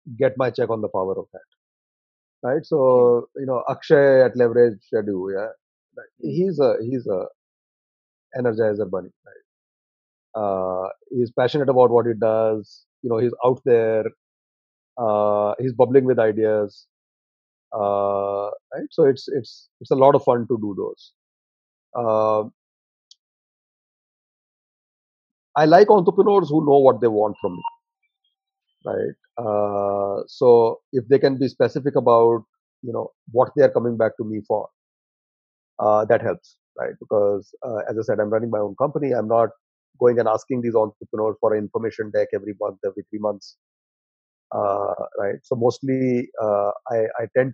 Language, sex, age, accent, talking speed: English, male, 30-49, Indian, 155 wpm